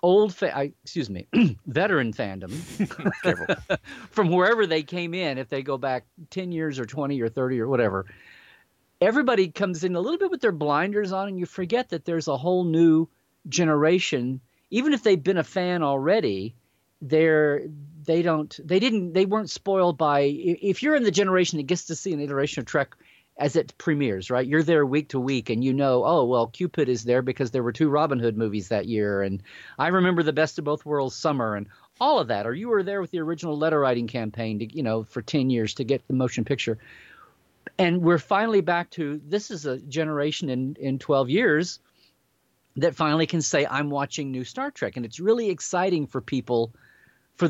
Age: 40-59